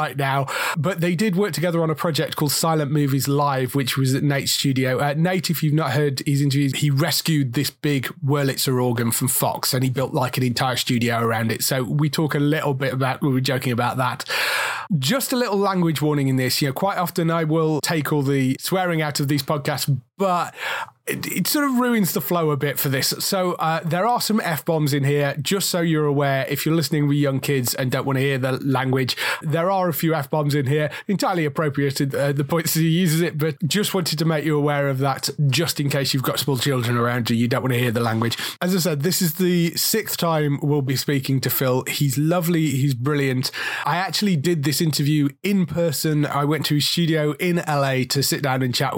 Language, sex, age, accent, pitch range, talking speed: English, male, 30-49, British, 135-170 Hz, 235 wpm